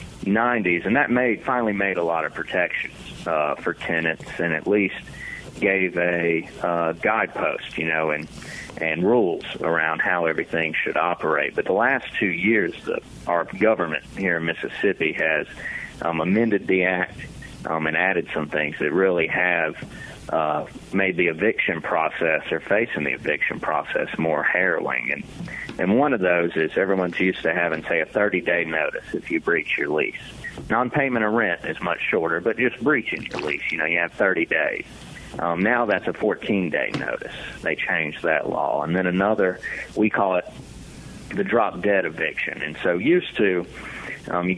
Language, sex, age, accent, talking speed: English, male, 40-59, American, 170 wpm